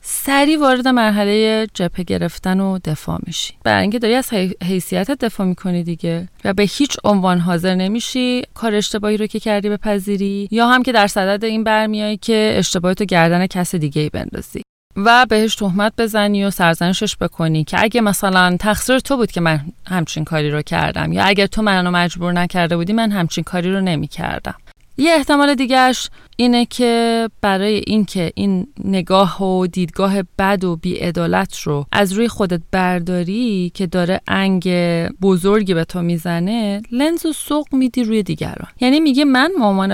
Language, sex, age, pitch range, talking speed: Persian, female, 30-49, 180-225 Hz, 165 wpm